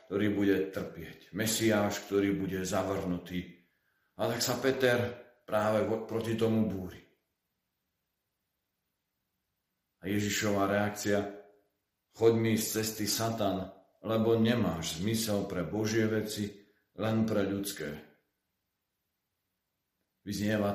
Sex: male